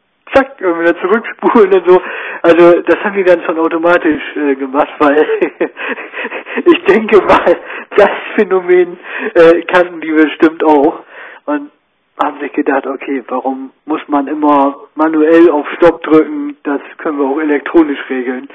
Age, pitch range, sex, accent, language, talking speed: 60-79, 145-195 Hz, male, German, German, 145 wpm